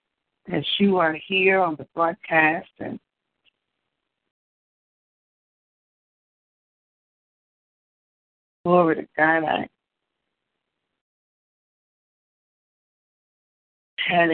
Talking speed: 55 wpm